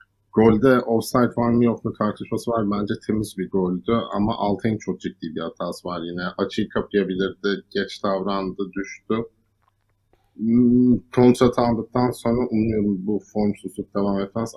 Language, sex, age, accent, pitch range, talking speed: Turkish, male, 50-69, native, 95-110 Hz, 140 wpm